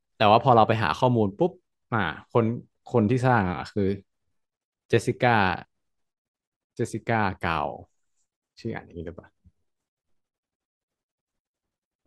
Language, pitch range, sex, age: Thai, 95-115 Hz, male, 20-39